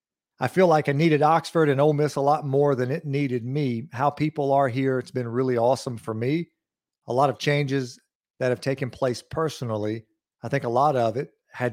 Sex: male